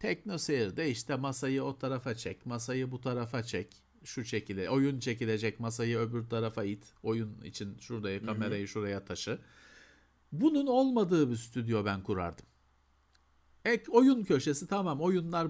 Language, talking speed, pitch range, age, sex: Turkish, 140 wpm, 110-165 Hz, 50-69, male